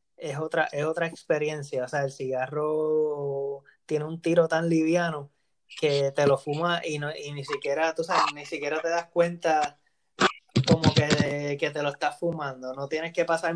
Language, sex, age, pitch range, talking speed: English, male, 20-39, 145-165 Hz, 185 wpm